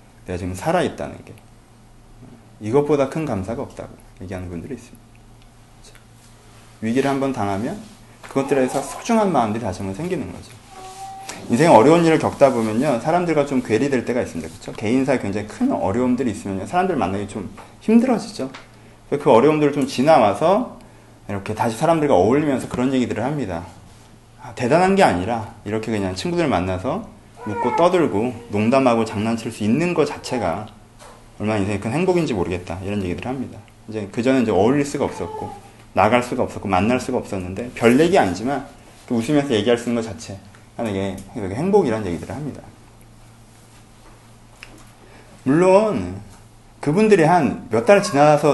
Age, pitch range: 30-49, 110-140 Hz